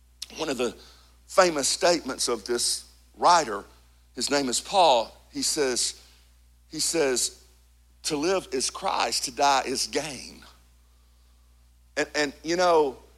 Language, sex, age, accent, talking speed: English, male, 50-69, American, 125 wpm